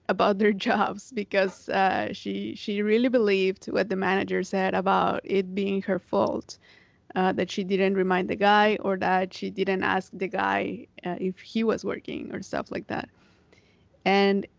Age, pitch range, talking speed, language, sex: 20-39, 190-210 Hz, 175 wpm, English, female